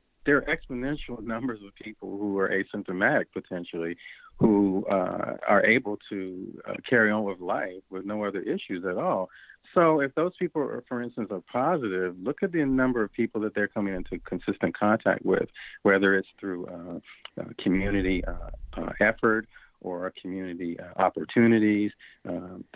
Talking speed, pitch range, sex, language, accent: 160 wpm, 90-105 Hz, male, English, American